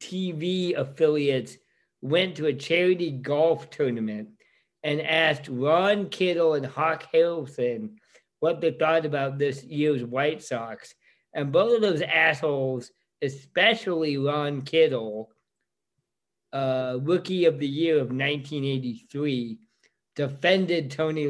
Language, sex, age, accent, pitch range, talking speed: English, male, 50-69, American, 135-170 Hz, 115 wpm